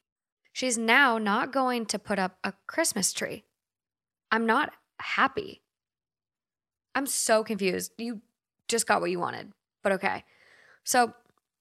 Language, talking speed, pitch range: English, 130 wpm, 190-230 Hz